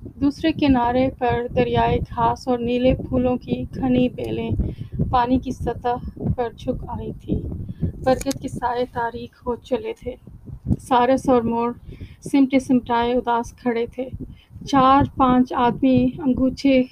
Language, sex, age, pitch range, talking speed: Urdu, female, 30-49, 235-260 Hz, 130 wpm